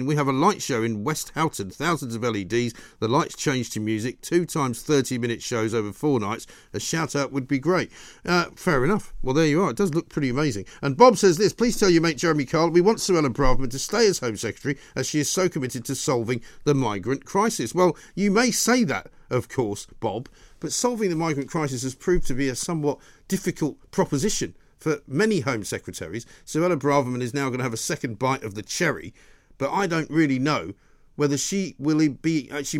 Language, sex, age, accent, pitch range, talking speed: English, male, 50-69, British, 130-160 Hz, 220 wpm